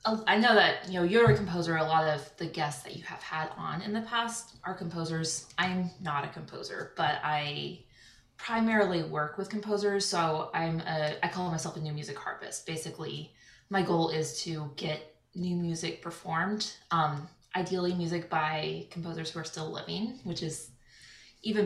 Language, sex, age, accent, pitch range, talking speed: English, female, 20-39, American, 155-190 Hz, 175 wpm